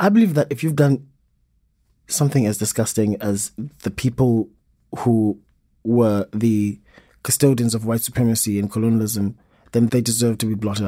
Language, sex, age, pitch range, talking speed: English, male, 20-39, 100-140 Hz, 150 wpm